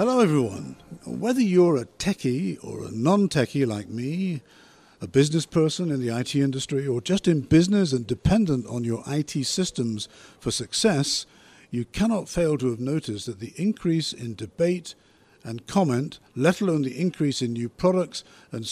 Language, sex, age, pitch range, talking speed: English, male, 50-69, 115-165 Hz, 165 wpm